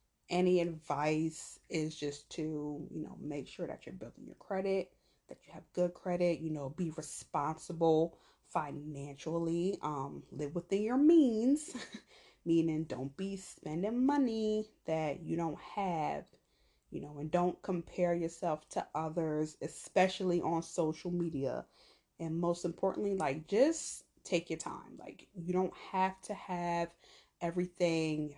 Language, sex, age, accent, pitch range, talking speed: English, female, 20-39, American, 155-185 Hz, 135 wpm